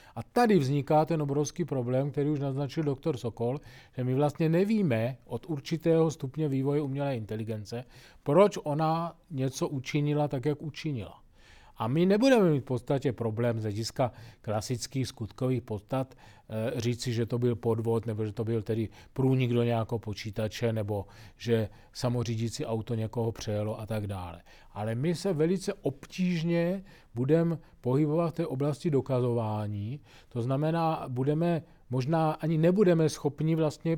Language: Czech